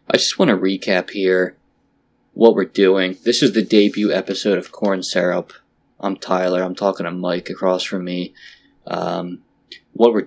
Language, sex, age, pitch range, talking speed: English, male, 20-39, 90-100 Hz, 170 wpm